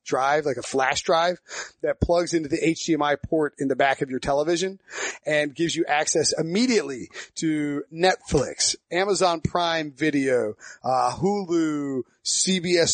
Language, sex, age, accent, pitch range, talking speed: English, male, 30-49, American, 145-180 Hz, 140 wpm